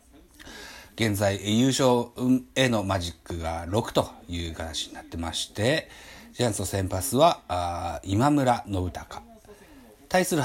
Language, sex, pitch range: Japanese, male, 95-140 Hz